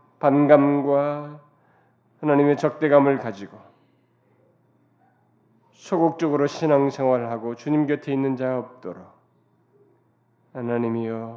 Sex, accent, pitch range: male, native, 115-135 Hz